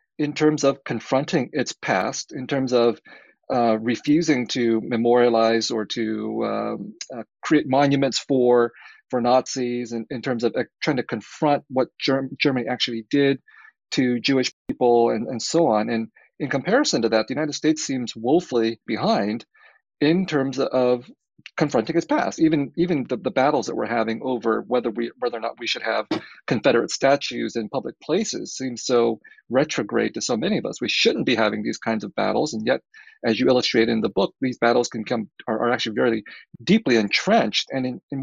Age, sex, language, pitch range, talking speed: 40-59, male, English, 115-140 Hz, 185 wpm